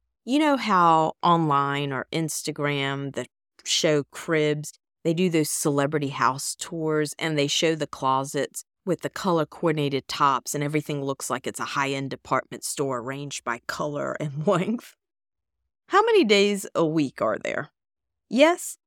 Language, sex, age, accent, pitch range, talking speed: English, female, 40-59, American, 145-235 Hz, 145 wpm